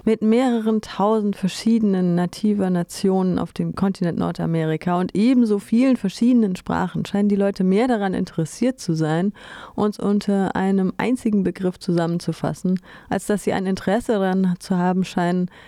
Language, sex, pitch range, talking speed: German, female, 170-205 Hz, 145 wpm